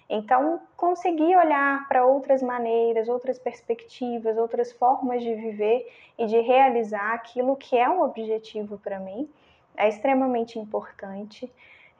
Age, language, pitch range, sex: 10-29, Portuguese, 225-275 Hz, female